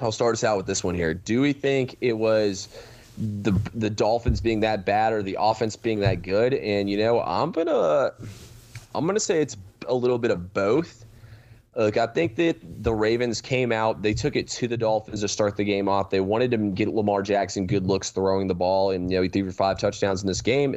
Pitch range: 95-115 Hz